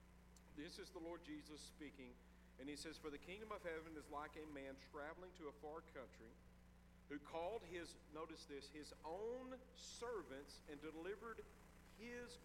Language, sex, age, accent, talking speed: English, male, 50-69, American, 165 wpm